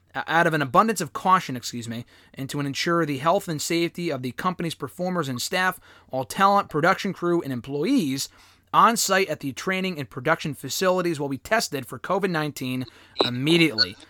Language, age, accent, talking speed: English, 30-49, American, 170 wpm